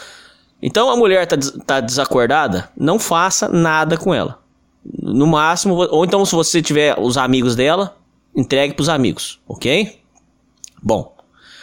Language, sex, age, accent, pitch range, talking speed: Portuguese, male, 20-39, Brazilian, 125-195 Hz, 135 wpm